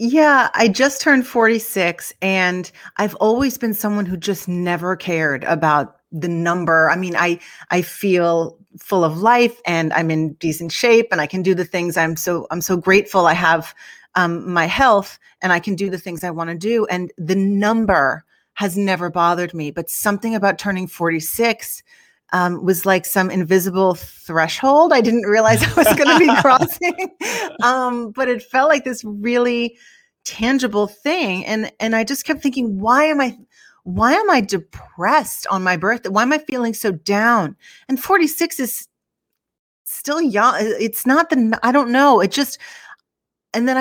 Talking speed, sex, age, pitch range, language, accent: 175 wpm, female, 30-49, 180-245 Hz, English, American